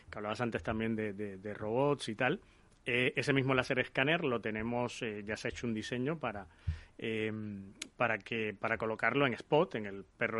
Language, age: Spanish, 30-49